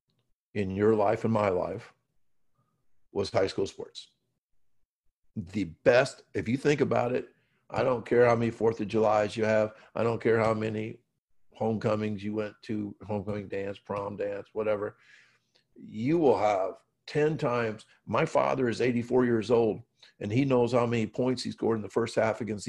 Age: 50-69